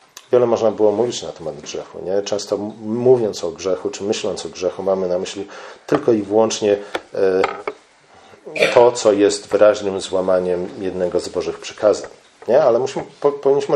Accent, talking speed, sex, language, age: native, 155 wpm, male, Polish, 40-59